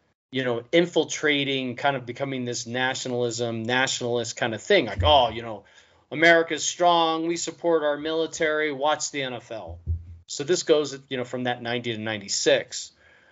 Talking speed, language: 160 wpm, English